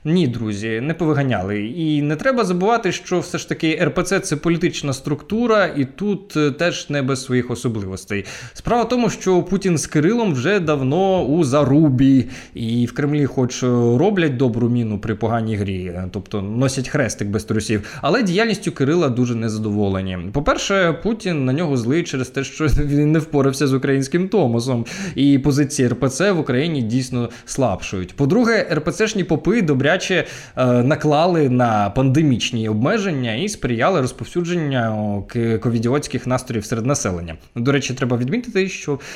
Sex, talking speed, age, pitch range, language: male, 145 wpm, 20-39, 120-175 Hz, Ukrainian